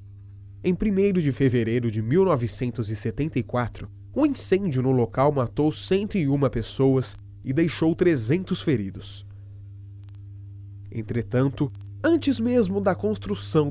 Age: 30-49